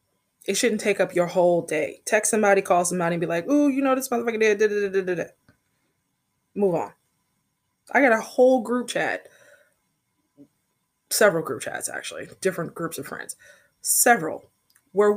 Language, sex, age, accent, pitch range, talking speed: English, female, 20-39, American, 165-215 Hz, 155 wpm